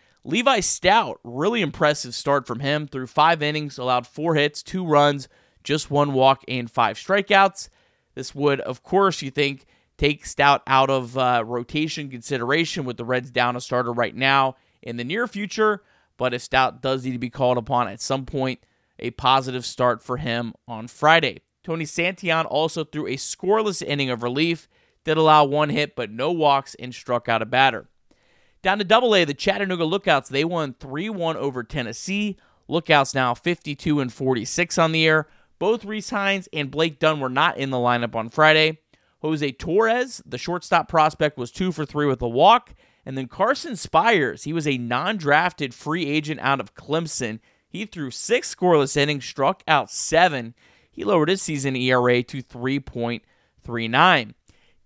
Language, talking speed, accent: English, 175 wpm, American